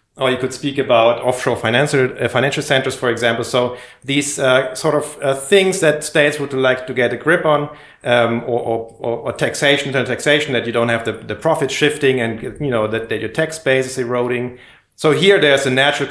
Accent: German